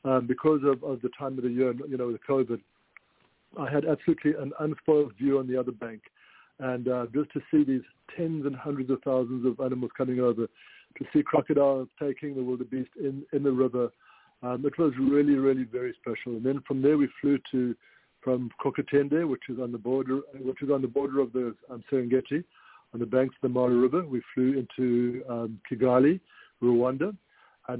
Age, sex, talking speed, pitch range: 60-79, male, 200 wpm, 125-145 Hz